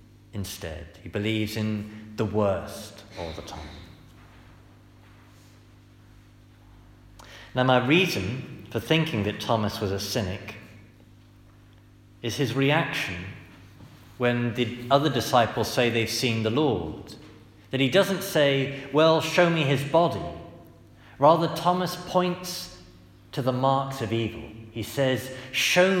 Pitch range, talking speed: 105-135 Hz, 120 wpm